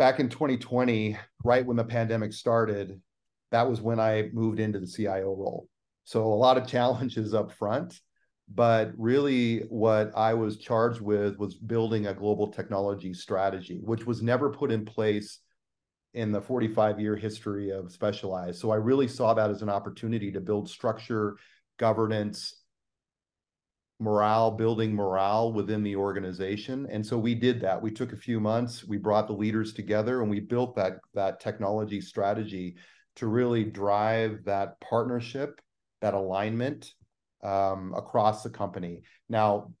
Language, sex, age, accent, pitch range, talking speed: English, male, 40-59, American, 100-115 Hz, 150 wpm